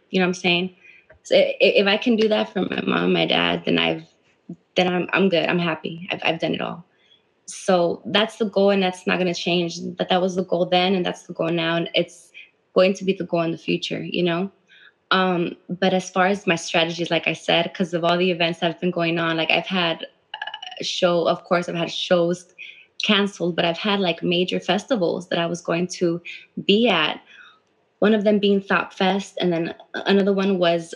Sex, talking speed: female, 225 wpm